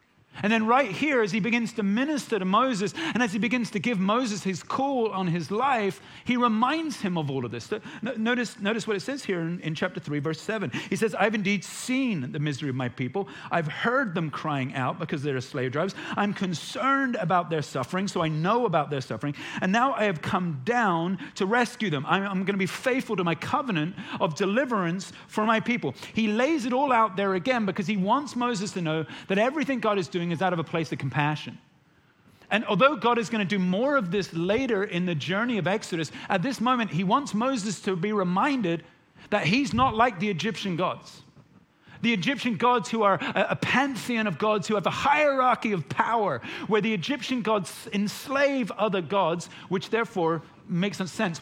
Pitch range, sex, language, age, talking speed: 165-230 Hz, male, English, 40-59, 210 wpm